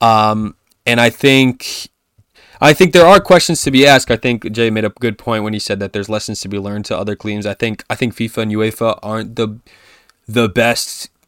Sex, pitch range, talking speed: male, 105-125 Hz, 225 wpm